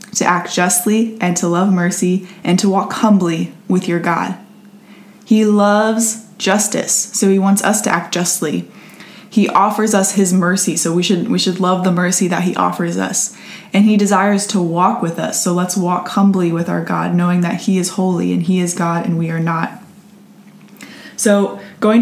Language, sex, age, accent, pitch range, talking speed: English, female, 20-39, American, 180-210 Hz, 190 wpm